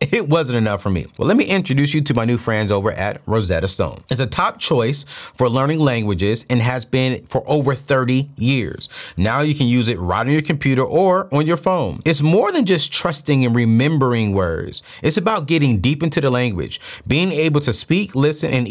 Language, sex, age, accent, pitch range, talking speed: English, male, 30-49, American, 120-180 Hz, 210 wpm